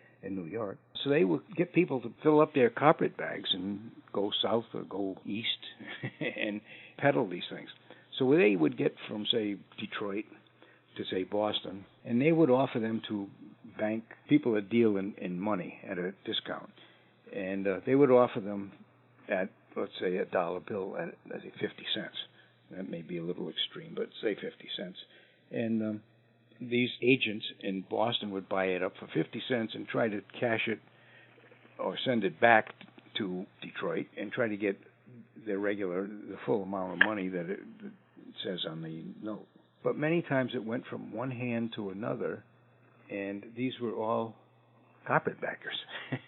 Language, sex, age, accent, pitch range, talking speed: English, male, 60-79, American, 100-125 Hz, 175 wpm